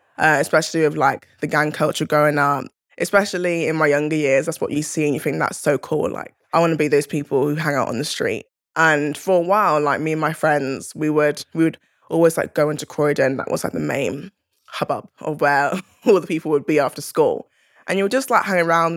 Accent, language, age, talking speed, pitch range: British, English, 10-29, 245 wpm, 145-165 Hz